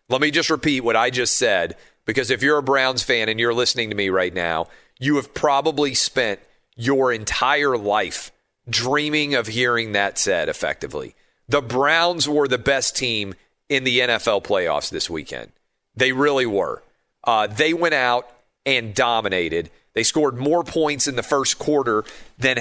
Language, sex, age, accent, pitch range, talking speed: English, male, 40-59, American, 120-145 Hz, 170 wpm